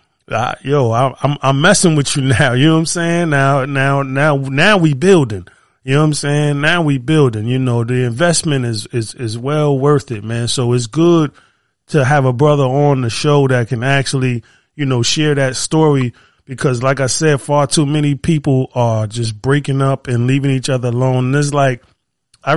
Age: 20-39